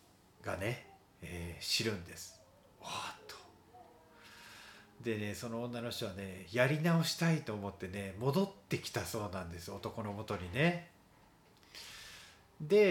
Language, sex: Japanese, male